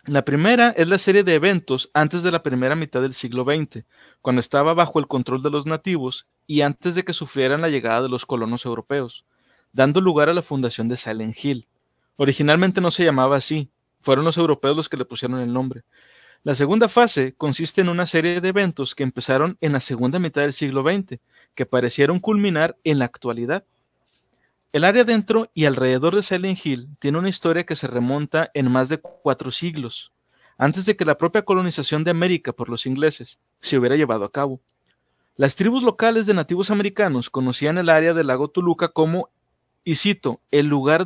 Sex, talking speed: male, 195 wpm